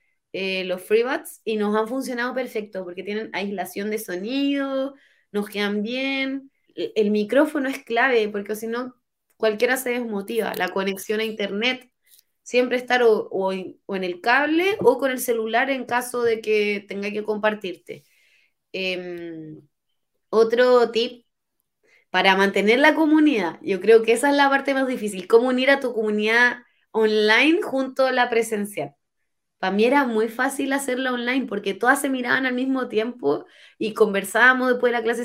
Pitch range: 205-260 Hz